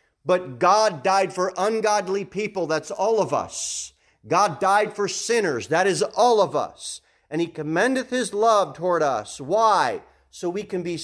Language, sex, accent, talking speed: English, male, American, 170 wpm